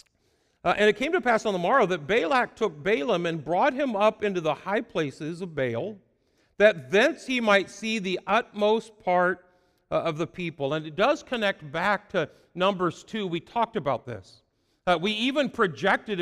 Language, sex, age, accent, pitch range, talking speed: English, male, 50-69, American, 160-215 Hz, 190 wpm